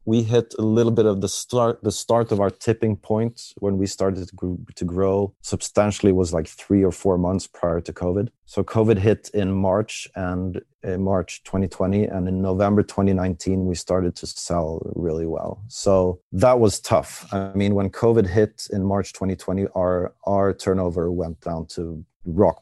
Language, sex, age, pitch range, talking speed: English, male, 40-59, 90-110 Hz, 175 wpm